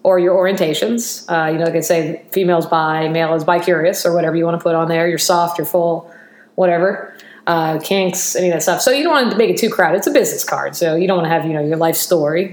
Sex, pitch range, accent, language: female, 160-195 Hz, American, English